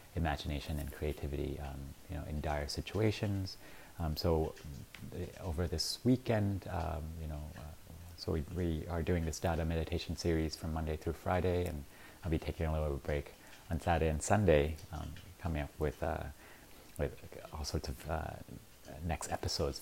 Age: 30-49